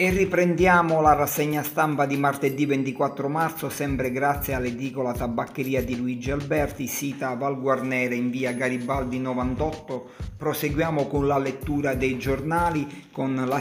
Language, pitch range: Italian, 125-140 Hz